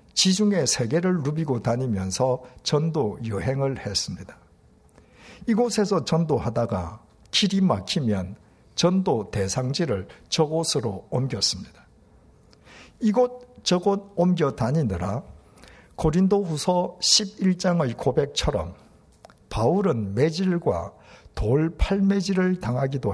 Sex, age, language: male, 60-79, Korean